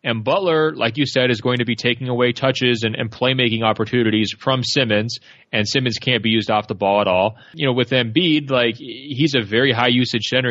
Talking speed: 225 wpm